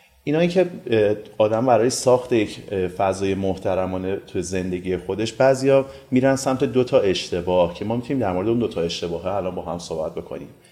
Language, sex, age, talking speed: Persian, male, 30-49, 180 wpm